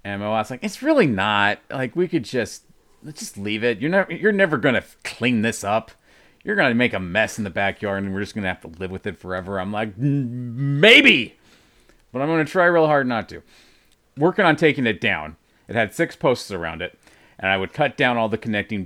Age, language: 40-59, English